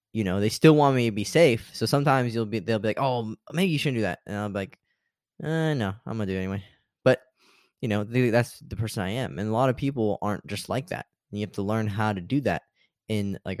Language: English